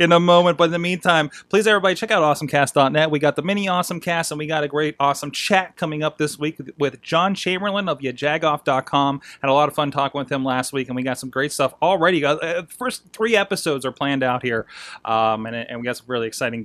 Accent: American